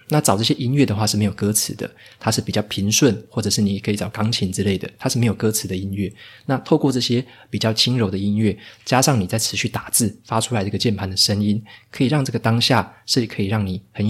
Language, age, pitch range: Chinese, 20-39, 100-120 Hz